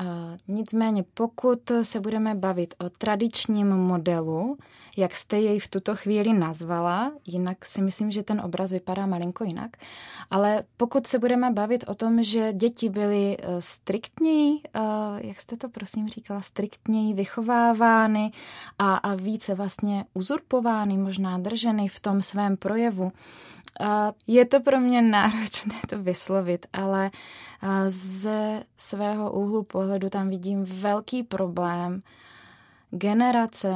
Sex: female